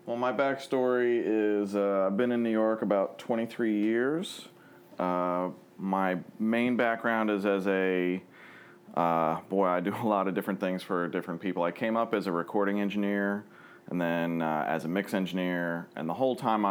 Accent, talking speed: American, 180 wpm